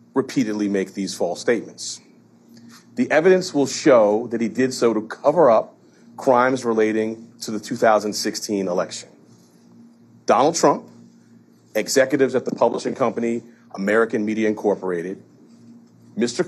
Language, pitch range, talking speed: German, 100-130 Hz, 120 wpm